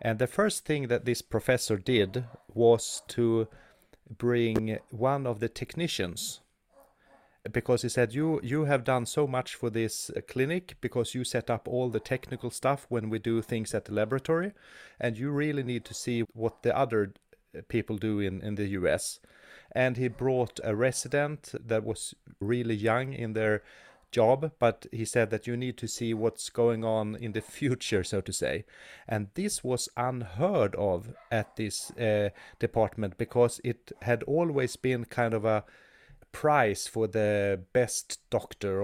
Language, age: English, 30-49